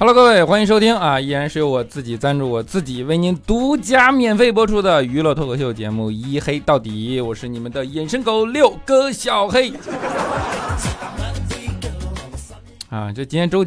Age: 20-39